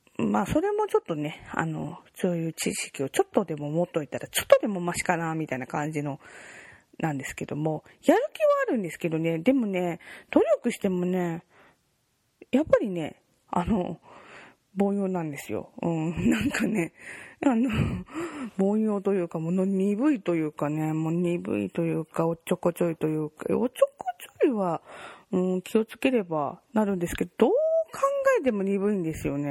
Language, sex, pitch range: Japanese, female, 160-260 Hz